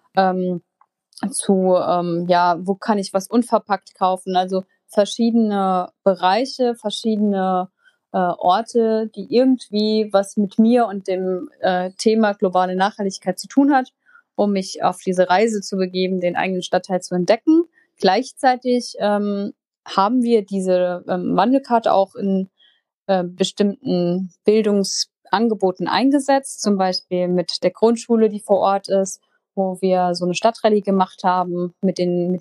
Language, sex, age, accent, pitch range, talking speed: German, female, 30-49, German, 185-215 Hz, 135 wpm